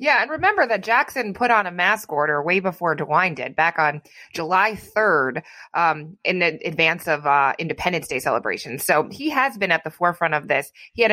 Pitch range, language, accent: 155-195 Hz, English, American